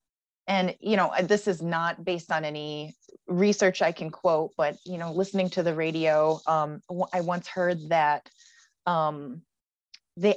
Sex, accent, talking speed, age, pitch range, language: female, American, 160 wpm, 20-39, 160-195 Hz, English